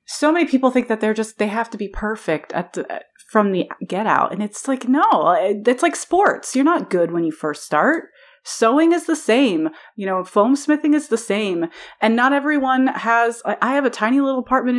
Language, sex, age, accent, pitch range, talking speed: English, female, 30-49, American, 170-245 Hz, 215 wpm